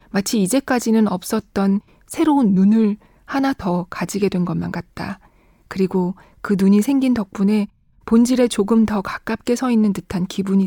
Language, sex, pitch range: Korean, female, 195-250 Hz